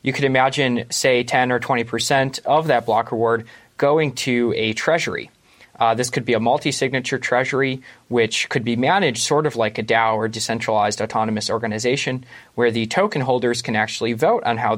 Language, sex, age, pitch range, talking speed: English, male, 20-39, 110-135 Hz, 180 wpm